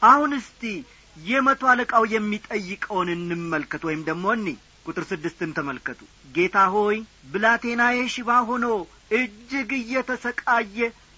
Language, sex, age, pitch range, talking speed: Amharic, male, 40-59, 185-250 Hz, 95 wpm